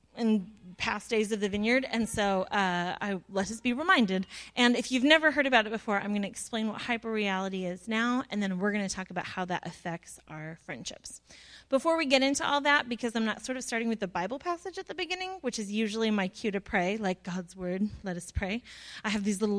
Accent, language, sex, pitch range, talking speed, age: American, English, female, 185-235 Hz, 240 wpm, 30-49